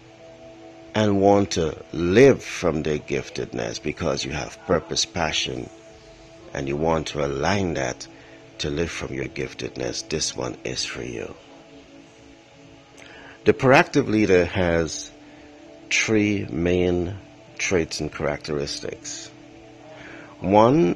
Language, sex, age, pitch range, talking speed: Filipino, male, 60-79, 90-110 Hz, 110 wpm